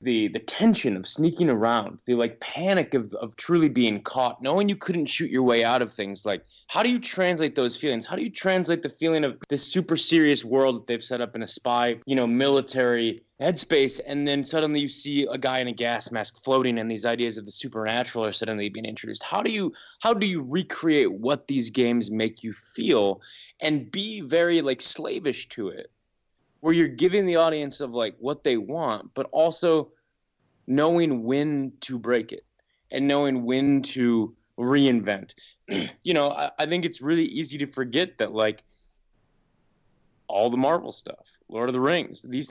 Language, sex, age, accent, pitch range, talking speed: English, male, 20-39, American, 120-155 Hz, 195 wpm